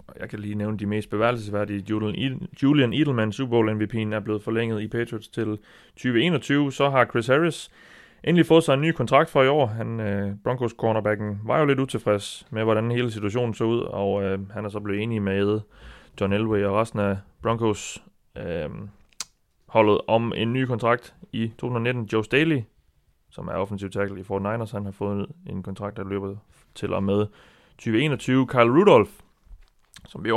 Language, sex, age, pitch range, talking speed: Danish, male, 30-49, 100-125 Hz, 180 wpm